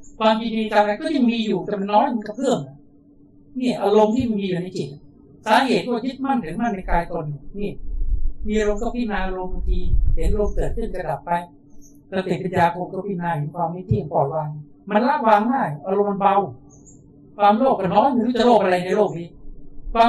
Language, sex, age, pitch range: Thai, male, 60-79, 145-210 Hz